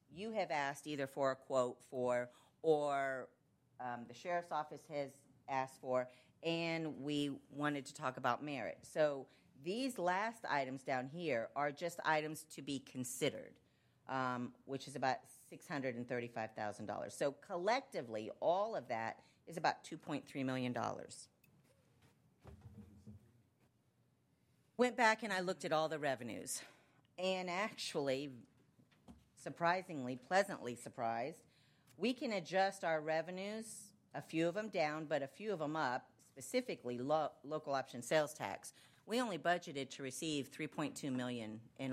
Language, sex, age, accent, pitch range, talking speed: English, female, 40-59, American, 125-165 Hz, 130 wpm